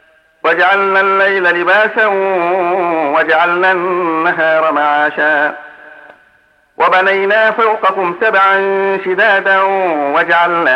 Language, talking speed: Arabic, 60 wpm